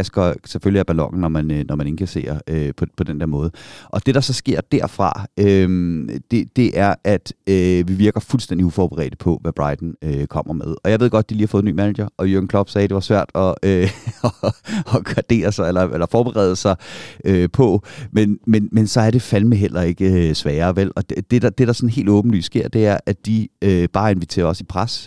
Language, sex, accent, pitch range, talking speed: Danish, male, native, 90-115 Hz, 230 wpm